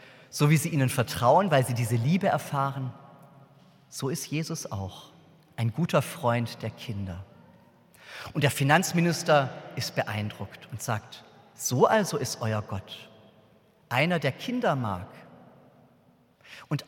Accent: German